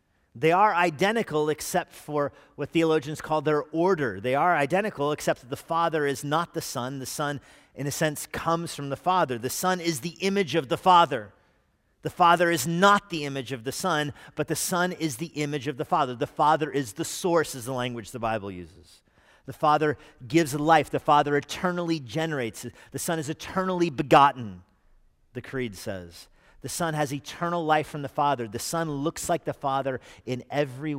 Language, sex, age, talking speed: English, male, 40-59, 190 wpm